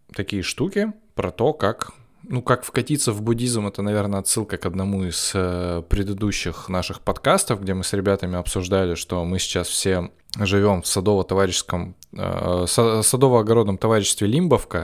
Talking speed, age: 140 wpm, 20-39